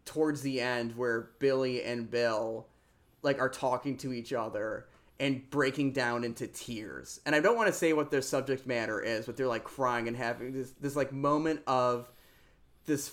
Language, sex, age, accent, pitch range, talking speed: English, male, 30-49, American, 115-140 Hz, 185 wpm